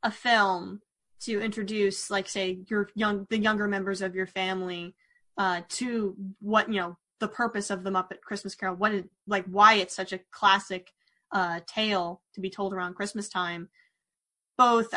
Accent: American